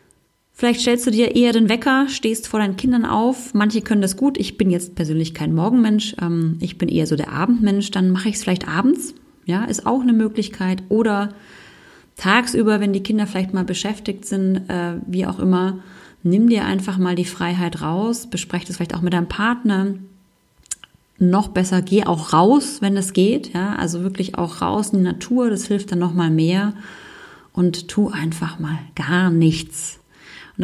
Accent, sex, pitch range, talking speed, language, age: German, female, 175-220 Hz, 185 wpm, German, 30-49